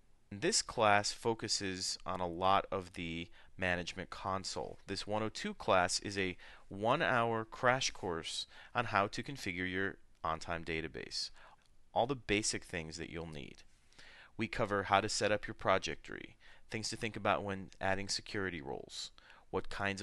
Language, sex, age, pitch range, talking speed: English, male, 30-49, 95-115 Hz, 150 wpm